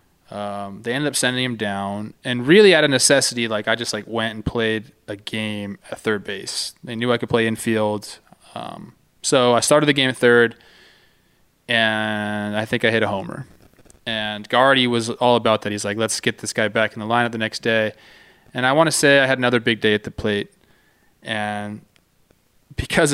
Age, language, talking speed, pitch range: 20-39, English, 205 wpm, 110-130 Hz